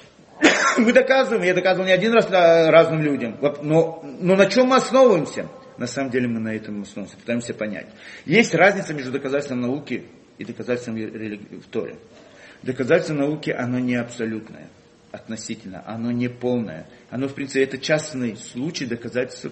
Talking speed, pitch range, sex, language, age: 155 wpm, 120-165 Hz, male, Russian, 40-59